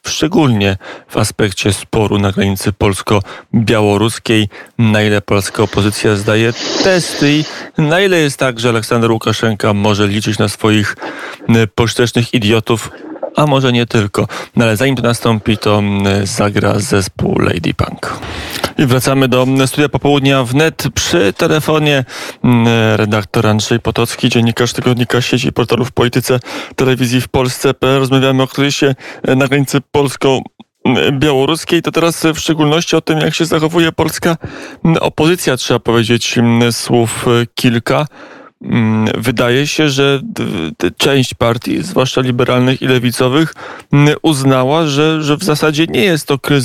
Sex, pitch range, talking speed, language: male, 115-145 Hz, 130 wpm, Polish